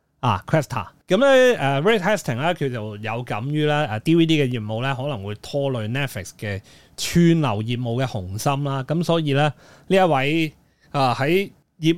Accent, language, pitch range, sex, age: native, Chinese, 120-165 Hz, male, 30-49